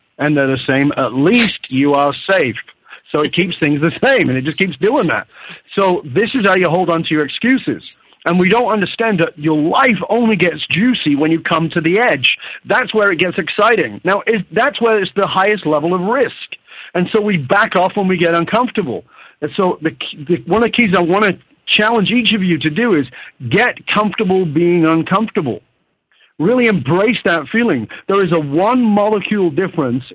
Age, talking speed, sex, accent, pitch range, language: 50-69, 200 wpm, male, American, 150-205 Hz, English